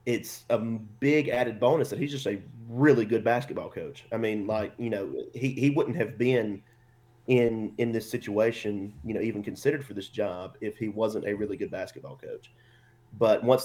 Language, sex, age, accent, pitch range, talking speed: English, male, 30-49, American, 105-120 Hz, 195 wpm